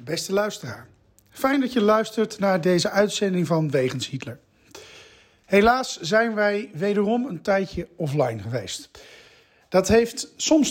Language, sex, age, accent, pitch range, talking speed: Dutch, male, 40-59, Dutch, 145-220 Hz, 130 wpm